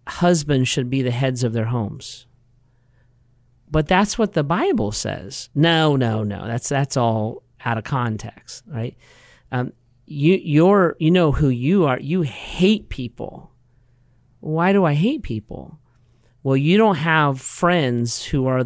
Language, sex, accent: English, male, American